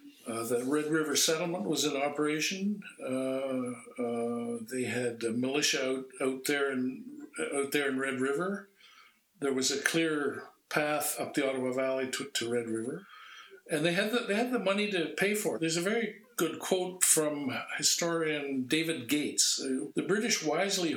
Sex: male